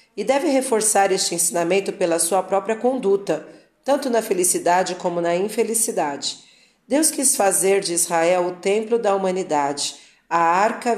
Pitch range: 175-220 Hz